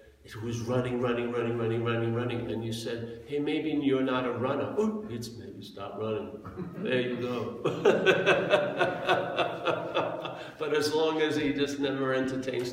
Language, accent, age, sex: English, American, 50-69, male